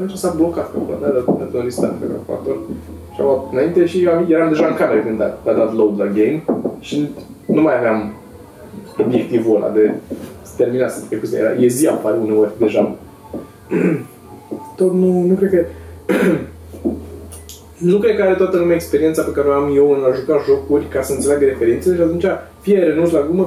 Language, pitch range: Romanian, 105-170 Hz